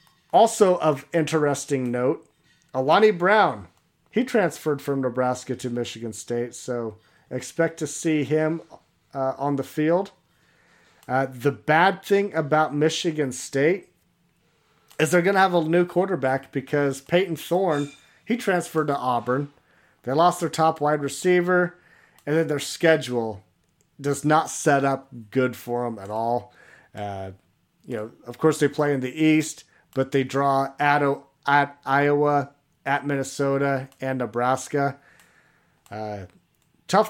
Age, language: 40-59, English